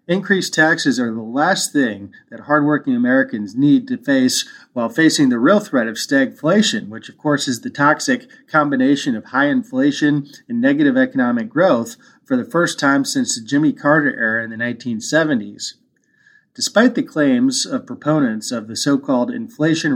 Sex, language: male, English